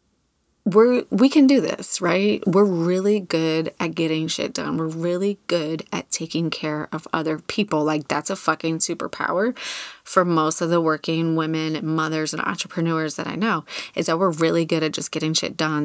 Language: English